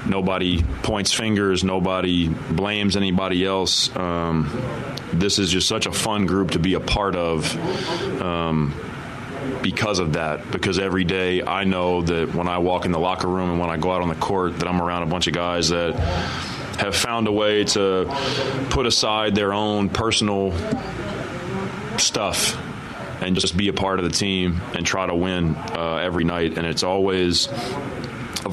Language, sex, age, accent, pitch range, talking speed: English, male, 30-49, American, 85-100 Hz, 175 wpm